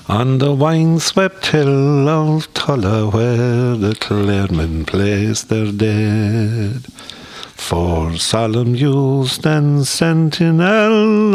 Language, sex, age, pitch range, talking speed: English, male, 50-69, 110-165 Hz, 95 wpm